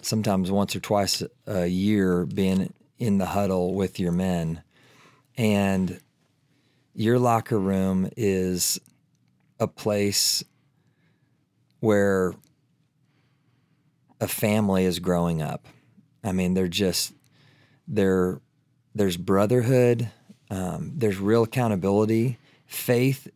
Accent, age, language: American, 40-59, English